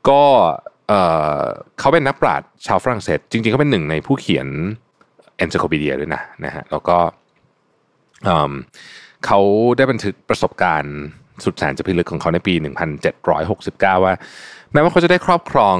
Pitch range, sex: 85-115 Hz, male